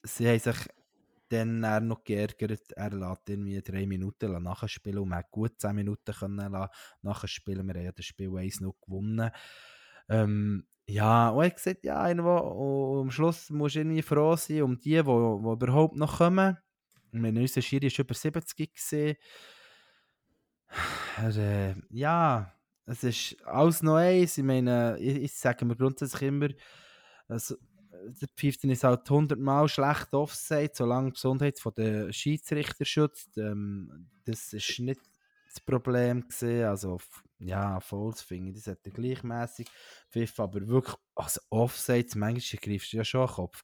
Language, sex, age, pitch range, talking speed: German, male, 20-39, 105-140 Hz, 155 wpm